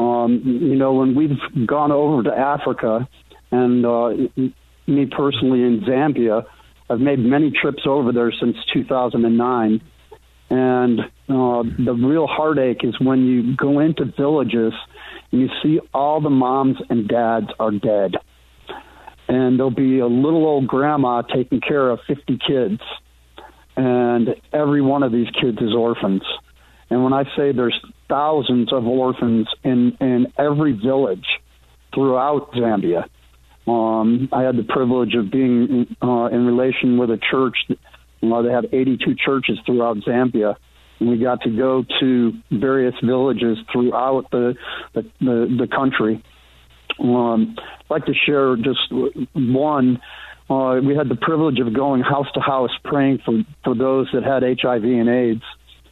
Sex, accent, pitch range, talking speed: male, American, 115-135 Hz, 150 wpm